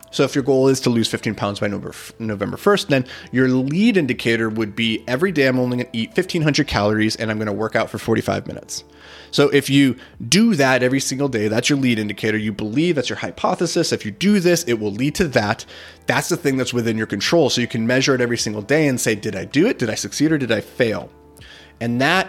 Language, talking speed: English, 250 wpm